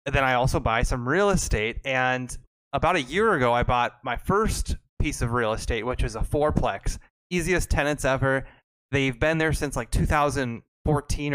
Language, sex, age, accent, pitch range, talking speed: English, male, 20-39, American, 120-145 Hz, 180 wpm